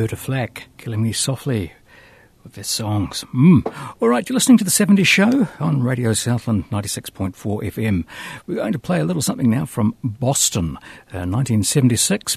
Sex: male